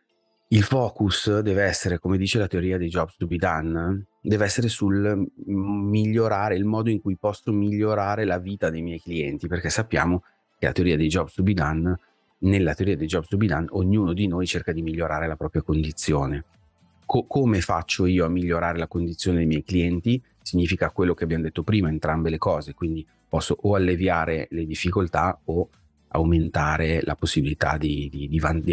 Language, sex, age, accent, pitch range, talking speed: Italian, male, 30-49, native, 85-105 Hz, 185 wpm